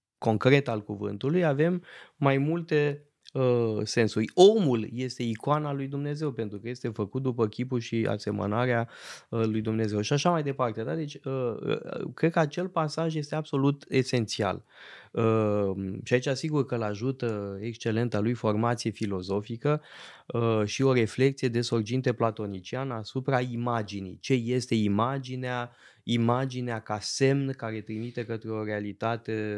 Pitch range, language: 110-140 Hz, Romanian